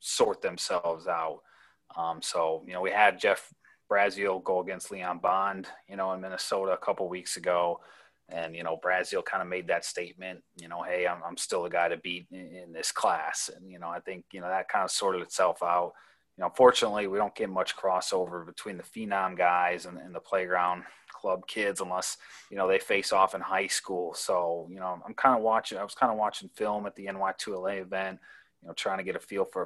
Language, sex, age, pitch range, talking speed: English, male, 30-49, 90-95 Hz, 225 wpm